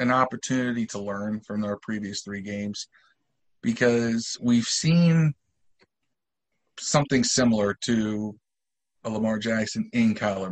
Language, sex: English, male